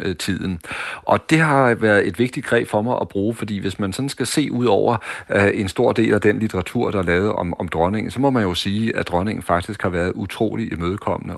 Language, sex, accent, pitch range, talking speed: Danish, male, native, 90-110 Hz, 235 wpm